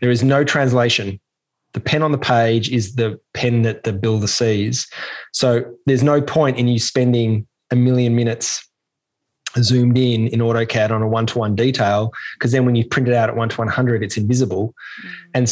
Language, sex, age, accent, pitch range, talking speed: English, male, 20-39, Australian, 115-130 Hz, 185 wpm